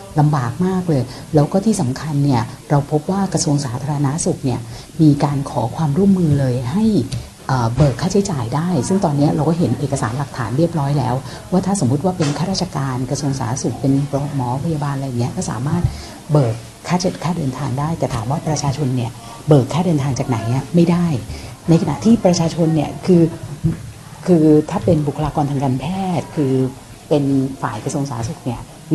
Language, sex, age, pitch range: Thai, female, 60-79, 135-170 Hz